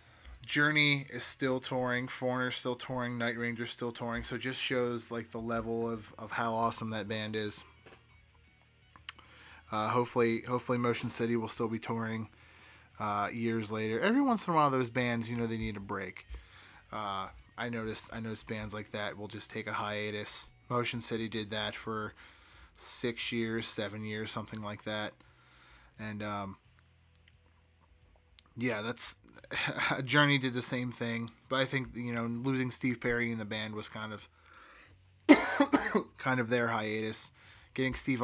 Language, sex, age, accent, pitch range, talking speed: English, male, 20-39, American, 105-125 Hz, 165 wpm